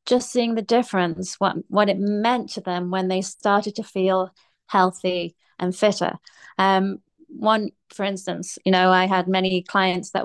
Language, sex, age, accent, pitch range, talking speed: English, female, 30-49, British, 185-220 Hz, 170 wpm